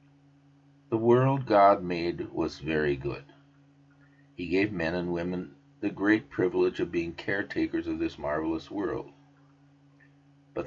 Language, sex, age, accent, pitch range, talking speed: English, male, 50-69, American, 90-140 Hz, 130 wpm